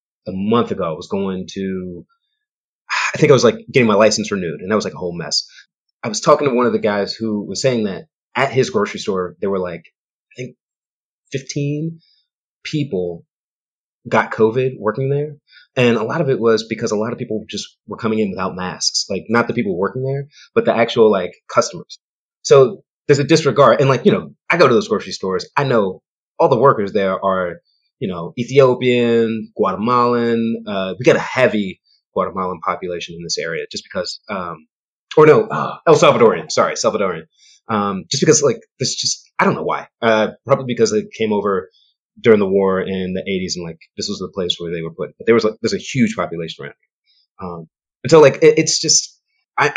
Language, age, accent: English, 30-49, American